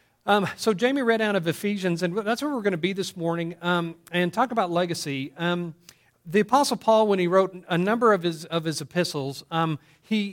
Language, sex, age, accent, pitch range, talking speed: English, male, 40-59, American, 165-200 Hz, 215 wpm